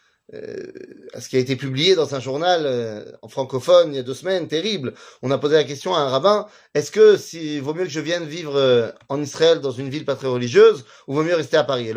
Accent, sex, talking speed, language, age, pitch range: French, male, 260 wpm, French, 30-49, 130-195 Hz